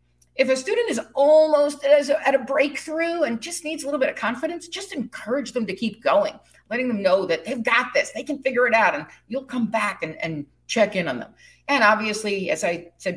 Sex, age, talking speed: female, 50-69, 225 wpm